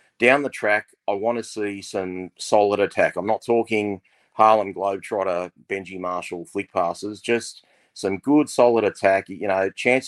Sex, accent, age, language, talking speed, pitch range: male, Australian, 30-49, English, 160 wpm, 100-115 Hz